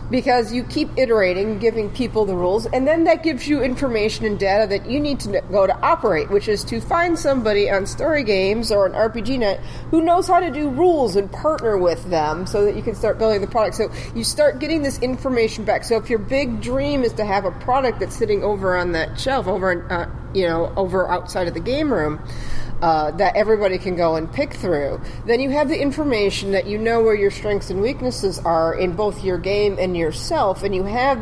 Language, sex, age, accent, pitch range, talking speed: English, female, 40-59, American, 180-245 Hz, 225 wpm